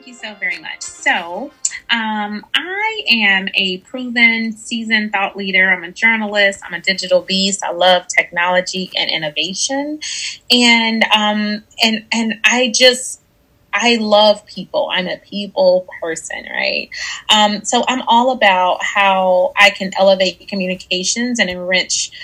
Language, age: English, 30-49